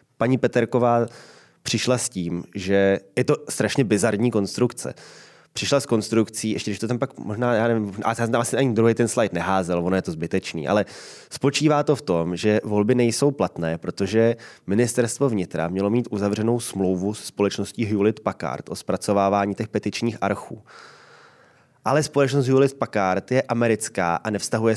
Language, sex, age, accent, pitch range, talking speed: Czech, male, 20-39, native, 100-125 Hz, 160 wpm